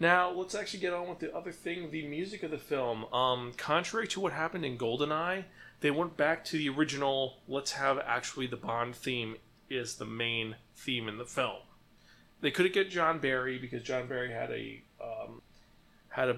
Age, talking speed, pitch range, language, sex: 30-49, 195 wpm, 125-160 Hz, English, male